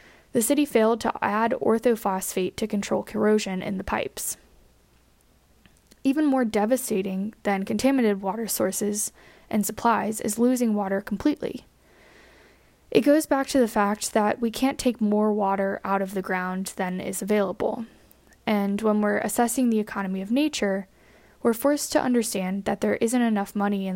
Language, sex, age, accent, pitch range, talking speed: English, female, 10-29, American, 200-235 Hz, 155 wpm